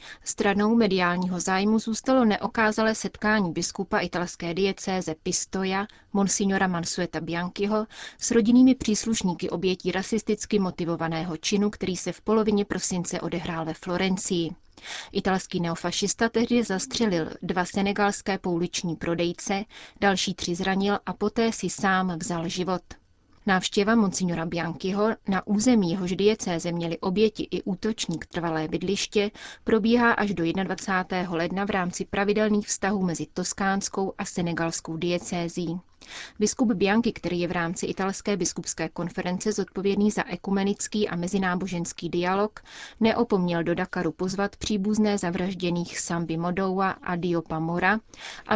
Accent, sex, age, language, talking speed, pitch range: native, female, 30-49, Czech, 120 wpm, 175-205 Hz